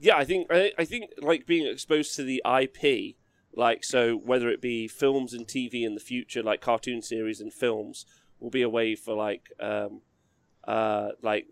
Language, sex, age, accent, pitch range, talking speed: English, male, 30-49, British, 115-150 Hz, 190 wpm